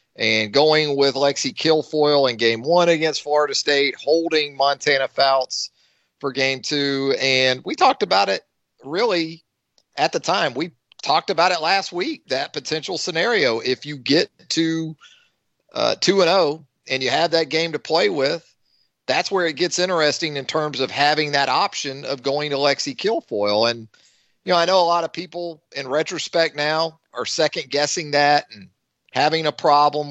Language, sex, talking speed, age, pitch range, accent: English, male, 165 wpm, 40-59, 135-165 Hz, American